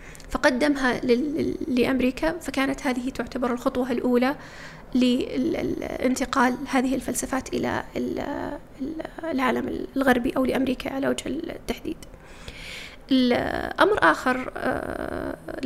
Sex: female